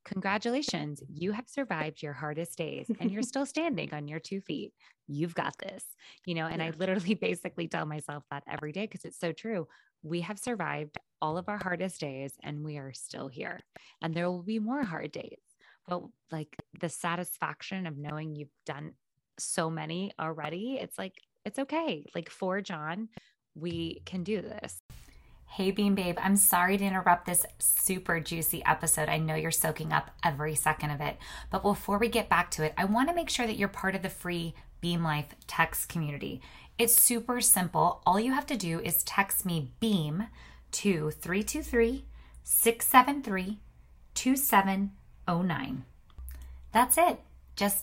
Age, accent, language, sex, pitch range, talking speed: 20-39, American, English, female, 160-215 Hz, 170 wpm